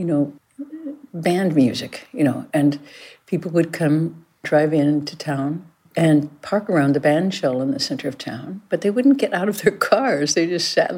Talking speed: 195 wpm